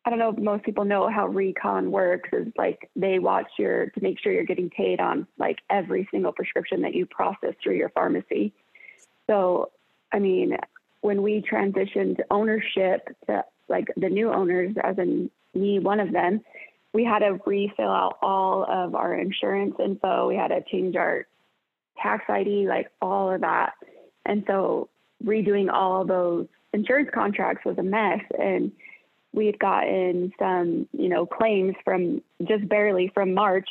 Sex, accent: female, American